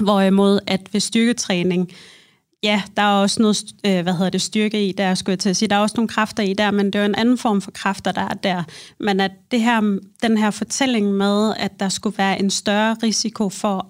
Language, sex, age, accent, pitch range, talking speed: Danish, female, 30-49, native, 195-225 Hz, 240 wpm